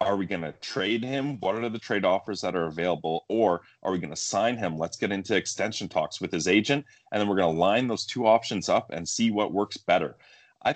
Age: 30-49